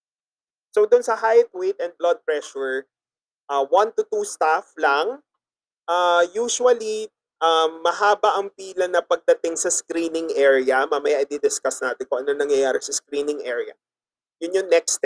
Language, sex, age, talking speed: Filipino, male, 30-49, 150 wpm